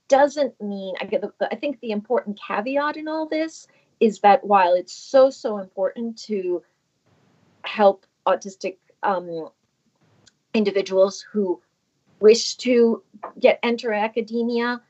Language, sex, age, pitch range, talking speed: English, female, 40-59, 180-250 Hz, 130 wpm